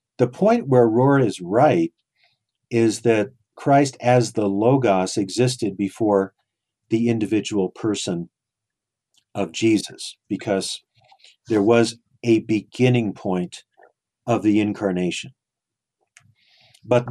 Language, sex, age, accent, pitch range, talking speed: English, male, 50-69, American, 105-130 Hz, 100 wpm